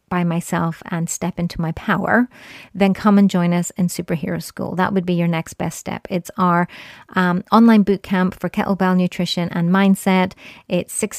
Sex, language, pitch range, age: female, English, 170-190 Hz, 30-49